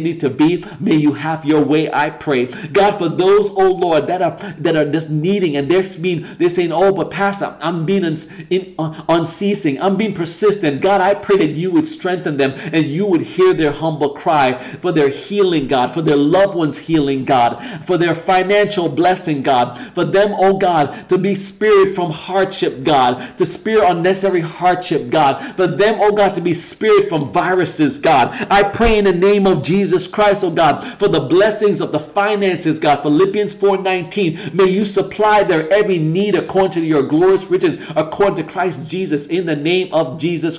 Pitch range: 160-205 Hz